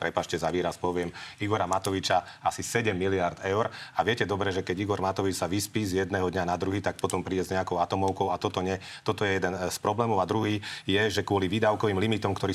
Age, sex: 40-59, male